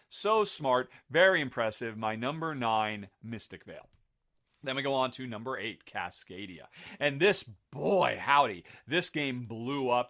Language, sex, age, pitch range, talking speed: English, male, 40-59, 125-170 Hz, 150 wpm